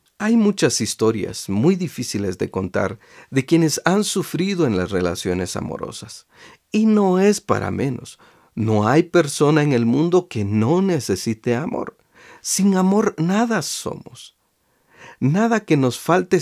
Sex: male